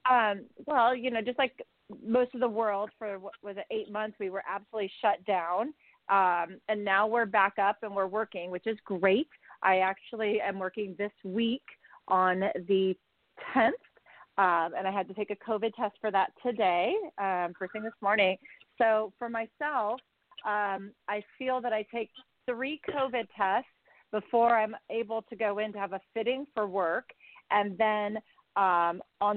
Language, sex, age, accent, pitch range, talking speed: English, female, 40-59, American, 195-240 Hz, 170 wpm